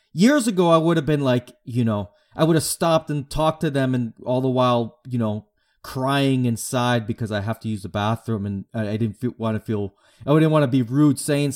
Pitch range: 110-145 Hz